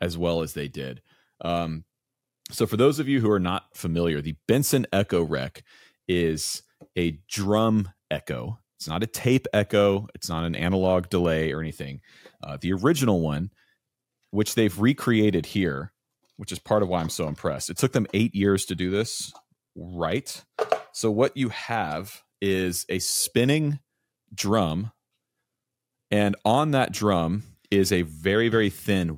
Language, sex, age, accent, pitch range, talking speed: English, male, 30-49, American, 85-110 Hz, 160 wpm